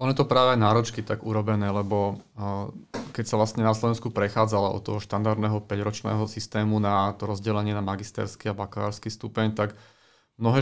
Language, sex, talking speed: Slovak, male, 160 wpm